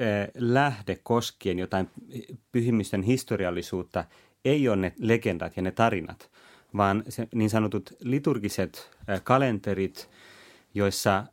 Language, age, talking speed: Finnish, 30-49, 100 wpm